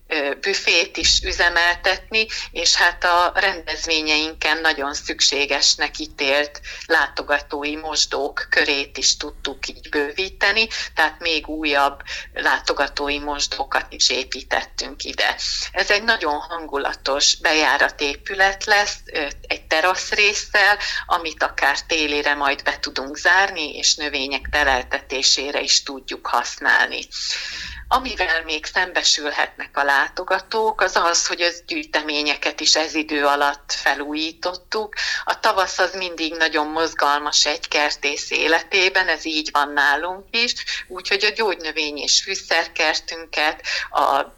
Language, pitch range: Hungarian, 150-185 Hz